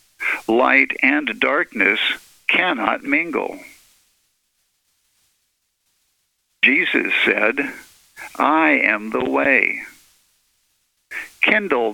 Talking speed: 60 wpm